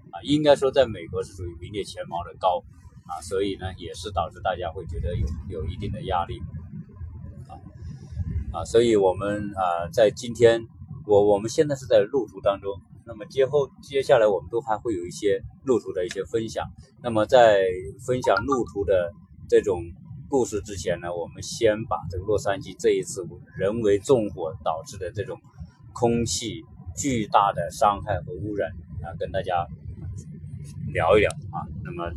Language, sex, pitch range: Chinese, male, 95-145 Hz